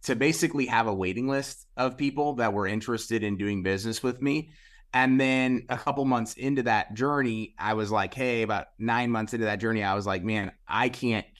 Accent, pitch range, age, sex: American, 100-125 Hz, 30-49, male